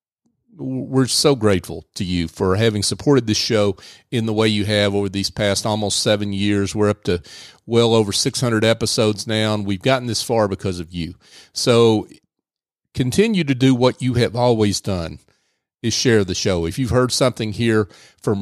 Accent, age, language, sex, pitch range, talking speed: American, 40-59, English, male, 95-120 Hz, 180 wpm